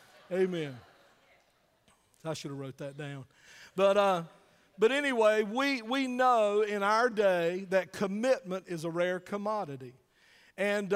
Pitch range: 160-210 Hz